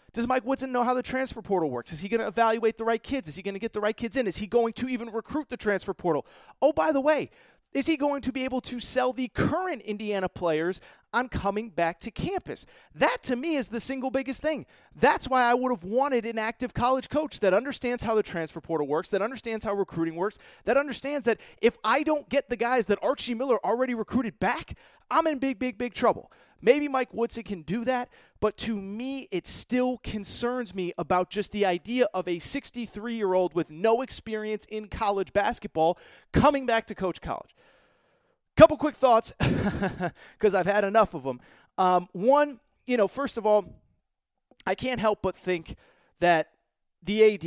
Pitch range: 195-255 Hz